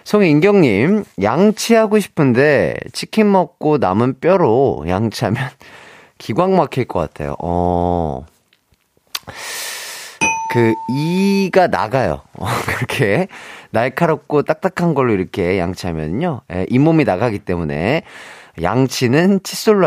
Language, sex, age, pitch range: Korean, male, 30-49, 110-170 Hz